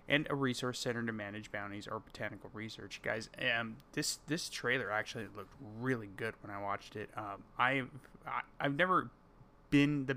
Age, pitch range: 20-39, 110-140 Hz